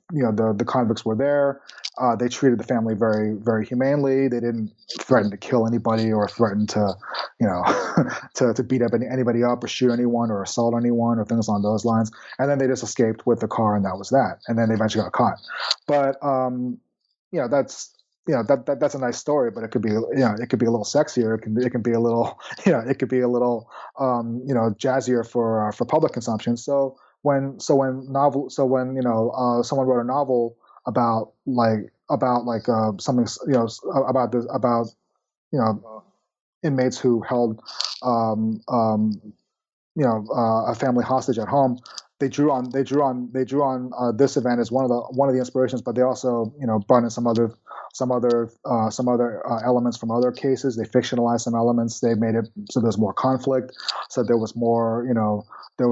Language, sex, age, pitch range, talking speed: English, male, 20-39, 115-130 Hz, 220 wpm